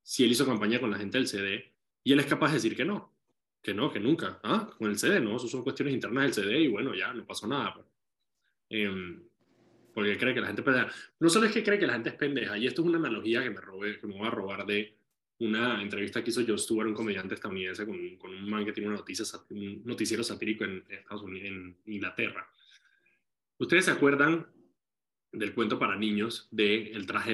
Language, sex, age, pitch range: Spanish, male, 20-39, 105-125 Hz